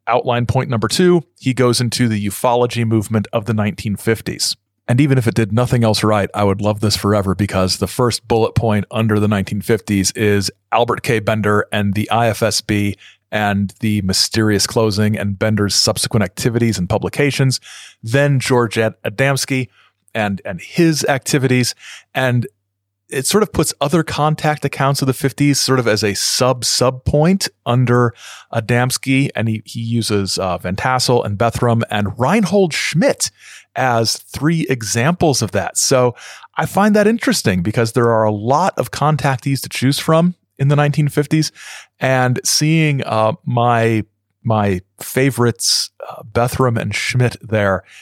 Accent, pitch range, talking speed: American, 105-135 Hz, 155 wpm